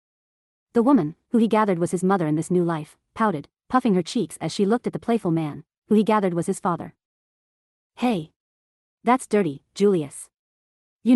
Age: 30-49